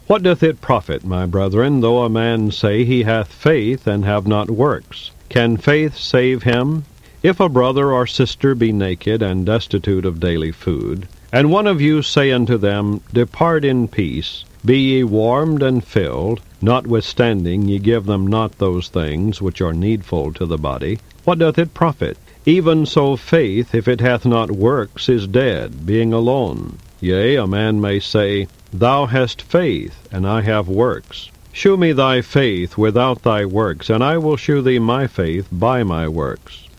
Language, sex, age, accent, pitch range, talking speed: English, male, 50-69, American, 95-130 Hz, 175 wpm